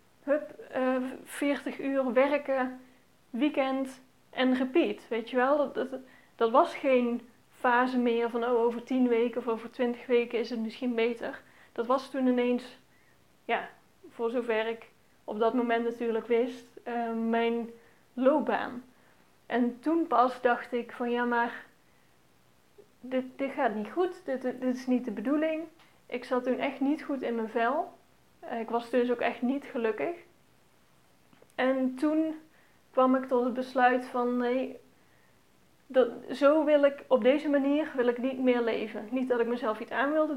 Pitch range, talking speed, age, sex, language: 235-270 Hz, 165 wpm, 30-49, female, Dutch